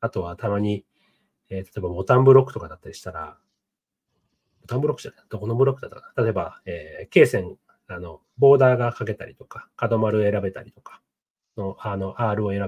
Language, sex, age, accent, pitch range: Japanese, male, 30-49, native, 105-140 Hz